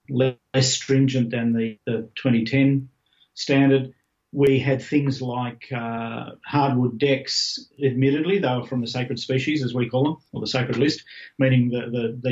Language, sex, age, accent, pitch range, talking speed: English, male, 40-59, Australian, 115-135 Hz, 155 wpm